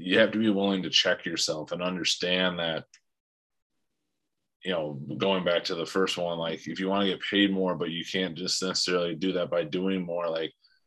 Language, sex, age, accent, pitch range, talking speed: English, male, 30-49, American, 80-95 Hz, 210 wpm